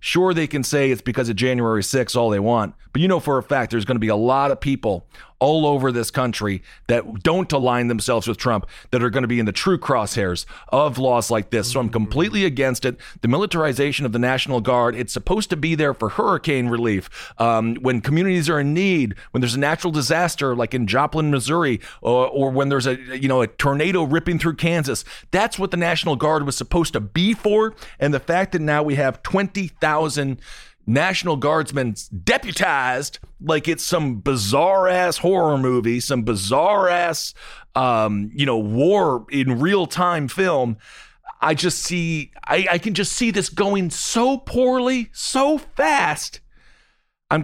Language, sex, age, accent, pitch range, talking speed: English, male, 40-59, American, 120-175 Hz, 190 wpm